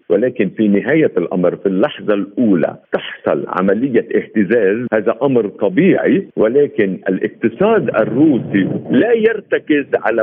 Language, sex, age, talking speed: Arabic, male, 50-69, 110 wpm